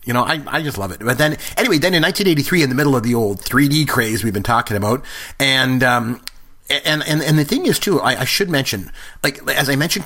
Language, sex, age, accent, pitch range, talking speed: English, male, 40-59, American, 115-150 Hz, 250 wpm